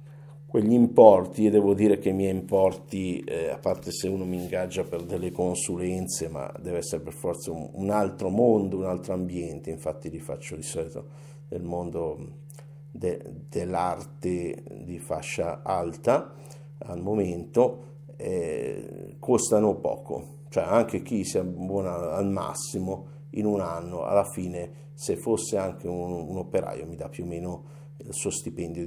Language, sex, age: Italian, male, 50-69